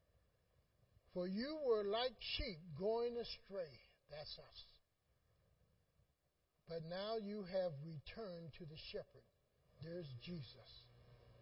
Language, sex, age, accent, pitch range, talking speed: English, male, 60-79, American, 120-180 Hz, 100 wpm